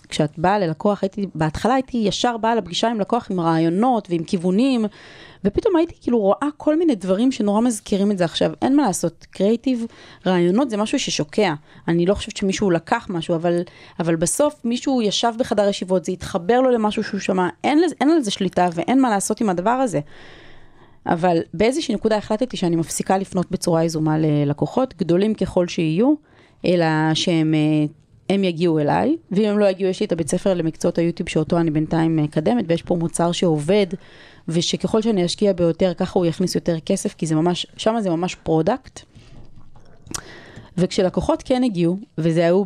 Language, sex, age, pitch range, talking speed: Hebrew, female, 30-49, 165-215 Hz, 170 wpm